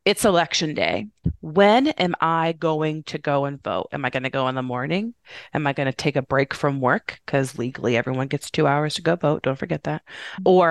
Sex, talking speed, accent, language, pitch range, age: female, 230 wpm, American, English, 145-175 Hz, 20-39